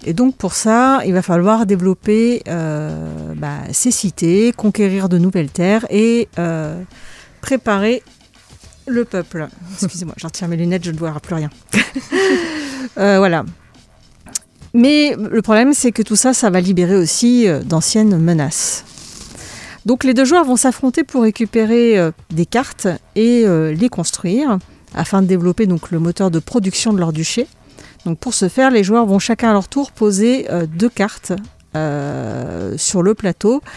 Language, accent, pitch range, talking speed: French, French, 170-230 Hz, 160 wpm